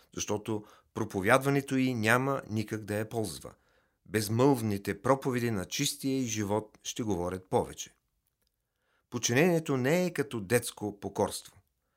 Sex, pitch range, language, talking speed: male, 100-130 Hz, Bulgarian, 115 wpm